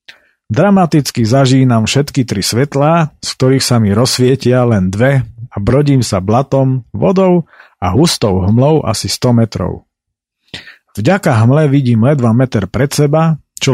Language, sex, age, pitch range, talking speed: Slovak, male, 50-69, 105-135 Hz, 135 wpm